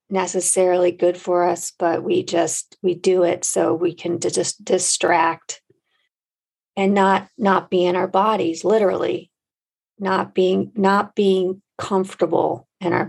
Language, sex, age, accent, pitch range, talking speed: English, female, 40-59, American, 170-195 Hz, 140 wpm